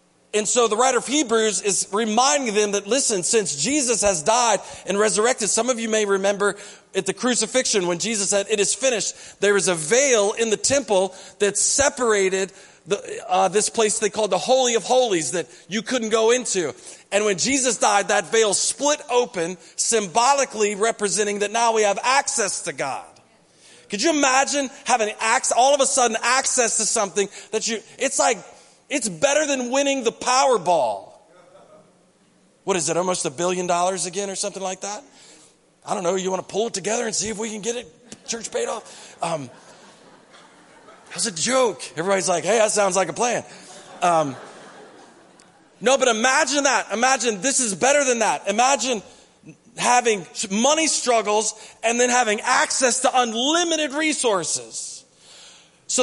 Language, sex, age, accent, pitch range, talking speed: English, male, 40-59, American, 200-255 Hz, 170 wpm